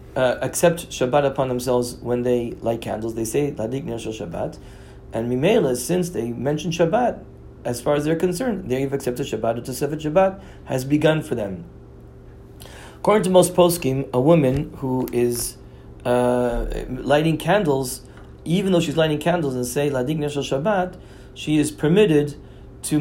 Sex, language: male, English